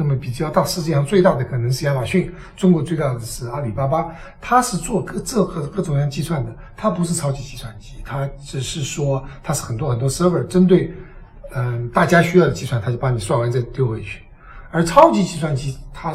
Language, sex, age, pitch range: Chinese, male, 60-79, 130-165 Hz